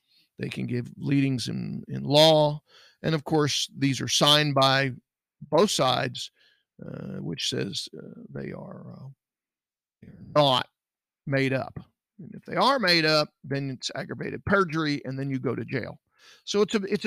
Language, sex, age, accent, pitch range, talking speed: English, male, 50-69, American, 135-175 Hz, 155 wpm